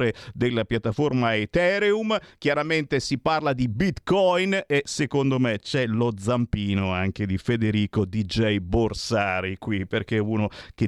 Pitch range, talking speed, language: 105-160 Hz, 130 wpm, Italian